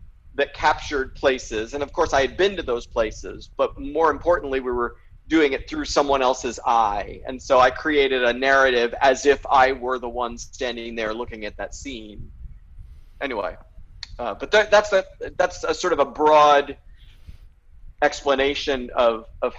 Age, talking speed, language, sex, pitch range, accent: 40-59, 170 wpm, English, male, 115-160 Hz, American